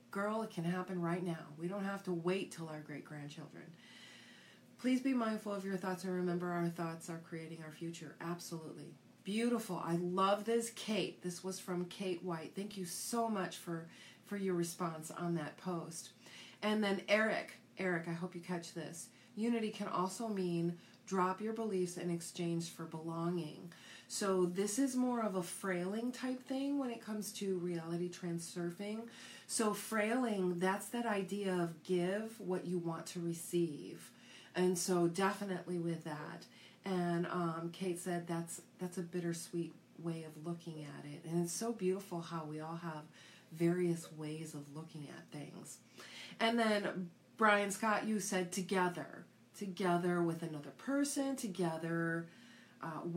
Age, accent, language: 40-59, American, English